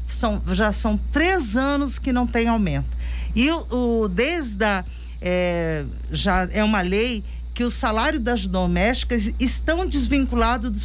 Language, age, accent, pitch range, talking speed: Portuguese, 50-69, Brazilian, 195-270 Hz, 150 wpm